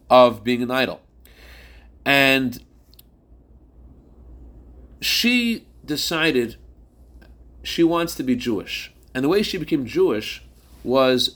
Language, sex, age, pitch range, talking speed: English, male, 40-59, 110-155 Hz, 100 wpm